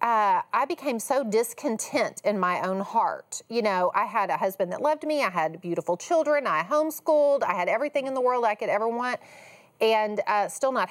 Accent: American